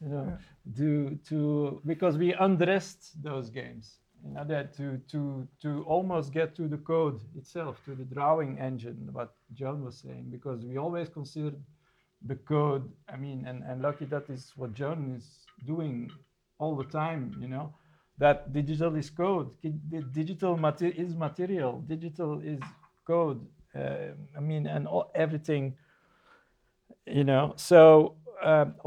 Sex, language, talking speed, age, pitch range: male, English, 150 wpm, 50-69, 135-160 Hz